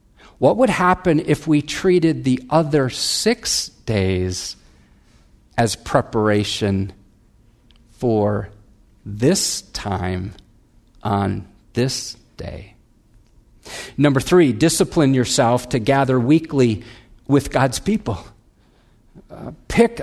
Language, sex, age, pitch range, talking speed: English, male, 50-69, 110-160 Hz, 85 wpm